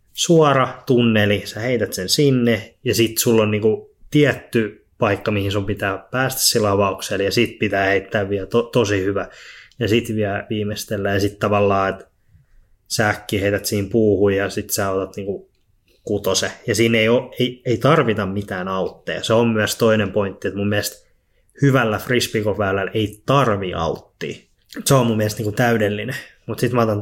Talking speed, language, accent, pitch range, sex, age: 170 wpm, Finnish, native, 100-120 Hz, male, 20-39